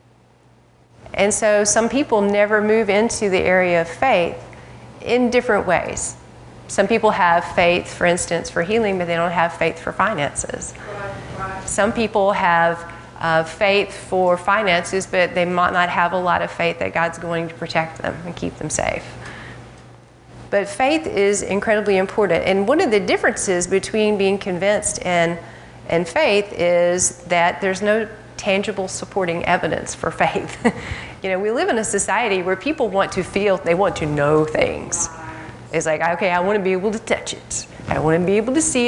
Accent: American